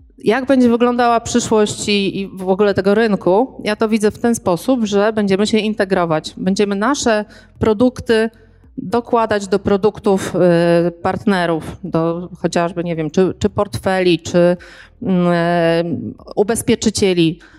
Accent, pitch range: native, 185-235 Hz